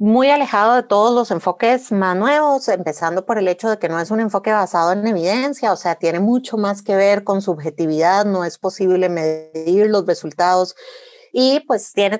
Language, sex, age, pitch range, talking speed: Spanish, female, 30-49, 180-235 Hz, 190 wpm